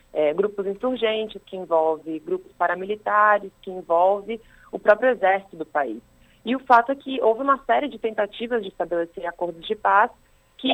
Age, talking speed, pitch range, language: 30-49, 170 wpm, 180-240 Hz, Portuguese